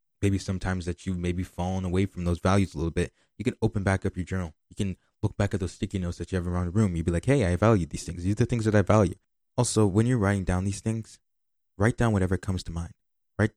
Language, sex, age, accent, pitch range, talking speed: English, male, 20-39, American, 90-105 Hz, 285 wpm